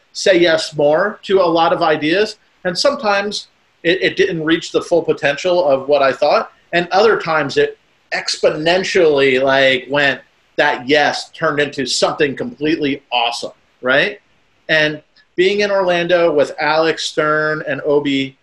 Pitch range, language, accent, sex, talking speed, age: 140-185 Hz, English, American, male, 145 wpm, 40-59